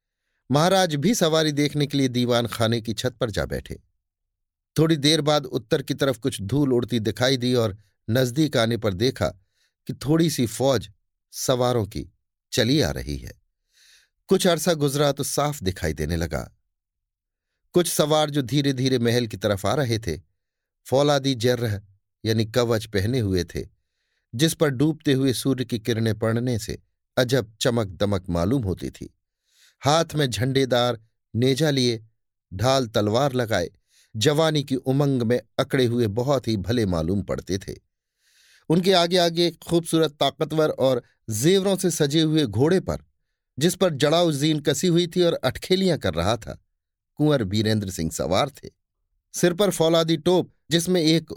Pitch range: 110-155 Hz